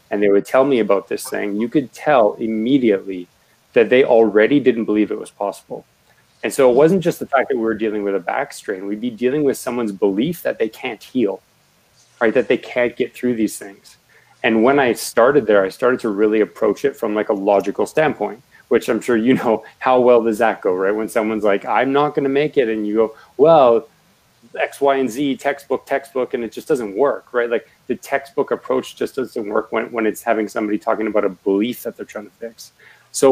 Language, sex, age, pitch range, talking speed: English, male, 30-49, 105-130 Hz, 225 wpm